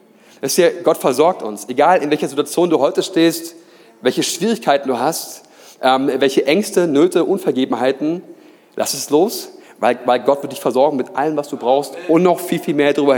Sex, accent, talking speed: male, German, 180 wpm